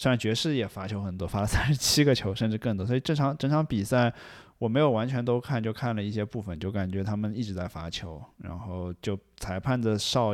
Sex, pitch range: male, 95-115 Hz